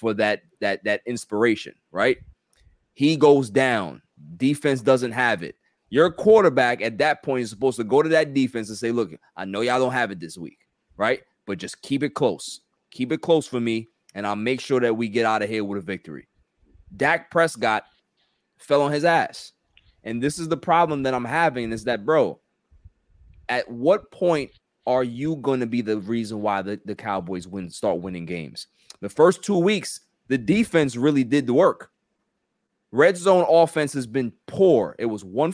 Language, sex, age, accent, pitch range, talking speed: English, male, 30-49, American, 115-155 Hz, 190 wpm